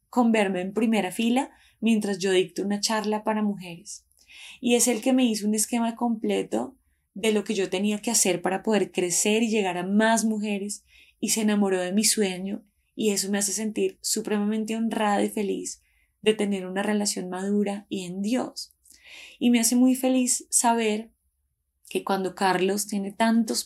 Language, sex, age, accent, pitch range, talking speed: Spanish, female, 20-39, Colombian, 190-220 Hz, 180 wpm